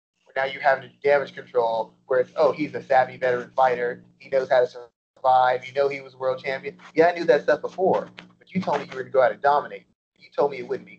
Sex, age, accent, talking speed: male, 30-49, American, 275 wpm